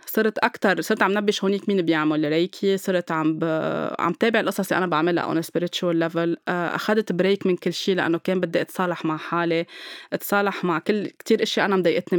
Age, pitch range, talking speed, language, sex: 20-39, 170-205 Hz, 190 wpm, Arabic, female